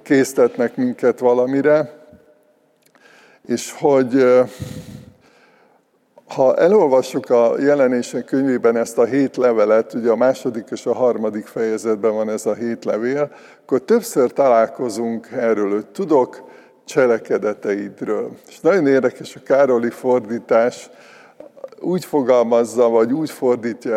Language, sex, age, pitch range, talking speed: Hungarian, male, 50-69, 115-150 Hz, 110 wpm